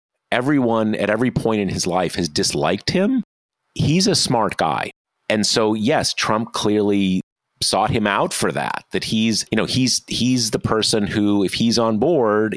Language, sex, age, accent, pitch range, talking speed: English, male, 40-59, American, 100-125 Hz, 175 wpm